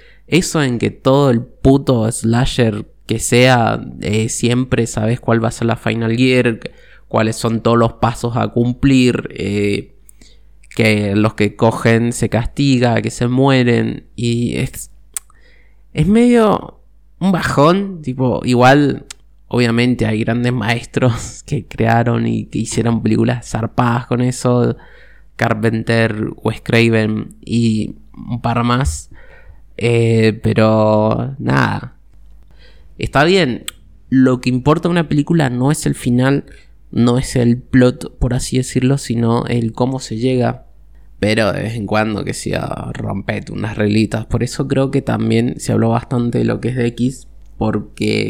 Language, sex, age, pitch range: Spanish, male, 20-39, 110-130 Hz